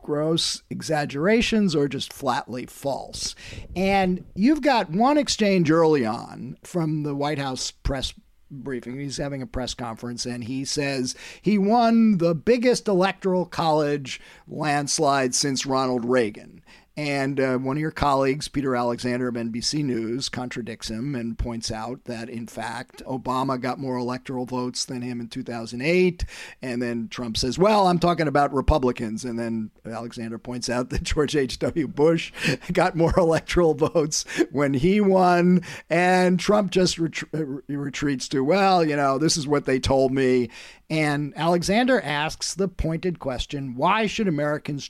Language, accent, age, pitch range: English, American, 50-69, 130-180 Hz